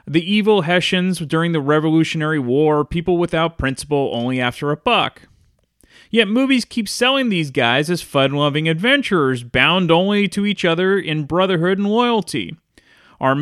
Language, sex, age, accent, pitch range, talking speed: English, male, 30-49, American, 135-200 Hz, 150 wpm